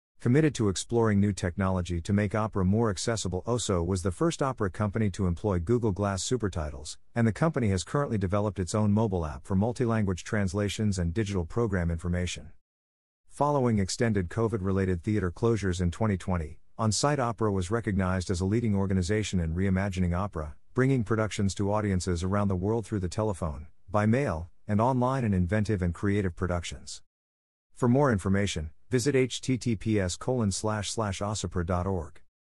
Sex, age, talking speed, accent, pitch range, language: male, 50-69, 150 wpm, American, 90-115 Hz, English